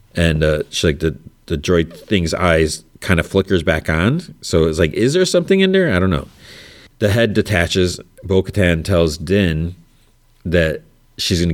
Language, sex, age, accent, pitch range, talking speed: English, male, 30-49, American, 80-100 Hz, 180 wpm